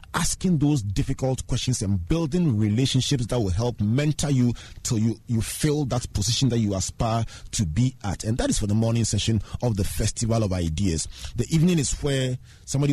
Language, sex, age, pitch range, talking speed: English, male, 30-49, 100-135 Hz, 190 wpm